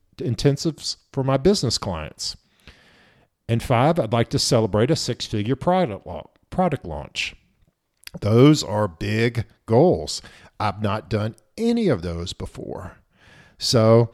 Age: 50-69